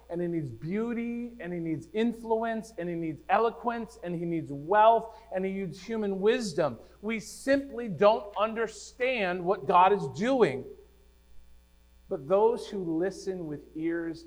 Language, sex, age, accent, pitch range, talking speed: English, male, 50-69, American, 150-205 Hz, 145 wpm